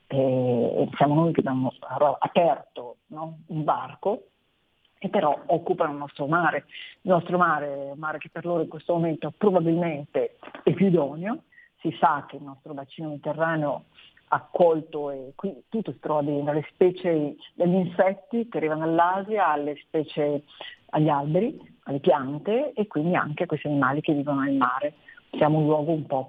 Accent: native